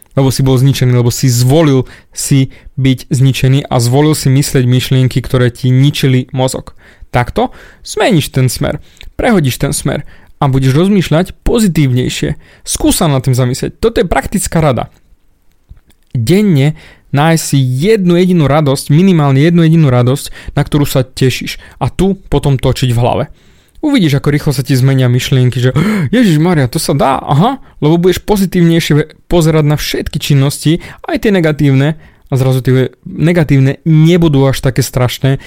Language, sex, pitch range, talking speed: Slovak, male, 130-155 Hz, 150 wpm